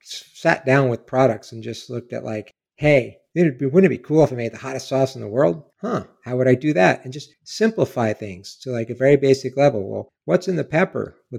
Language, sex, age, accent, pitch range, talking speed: English, male, 50-69, American, 115-140 Hz, 250 wpm